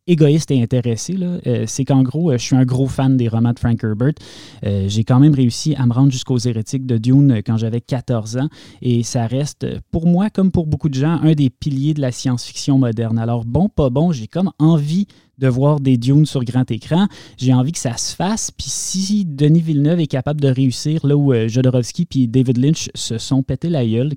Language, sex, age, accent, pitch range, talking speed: French, male, 20-39, Canadian, 120-150 Hz, 230 wpm